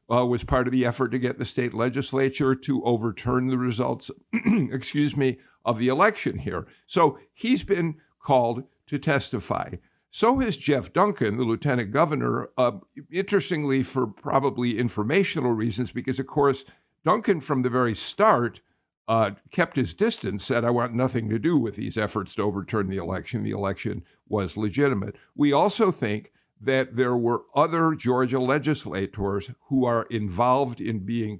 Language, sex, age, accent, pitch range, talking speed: English, male, 50-69, American, 115-145 Hz, 160 wpm